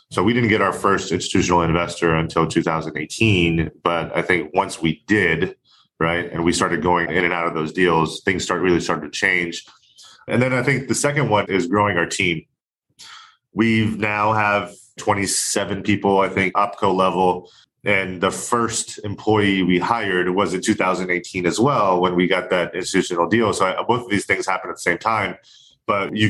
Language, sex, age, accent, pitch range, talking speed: English, male, 30-49, American, 85-105 Hz, 185 wpm